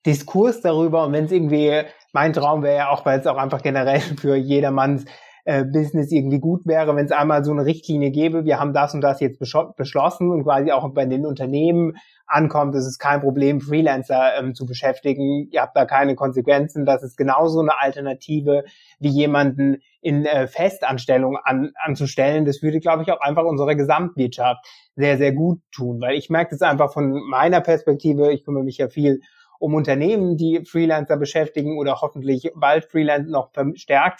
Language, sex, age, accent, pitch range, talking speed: German, male, 30-49, German, 140-165 Hz, 185 wpm